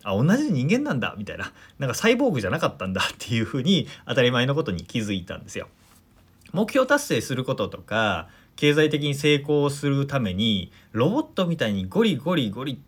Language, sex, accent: Japanese, male, native